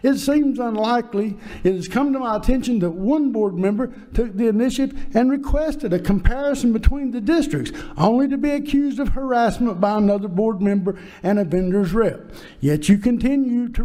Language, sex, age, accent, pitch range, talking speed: English, male, 60-79, American, 175-255 Hz, 180 wpm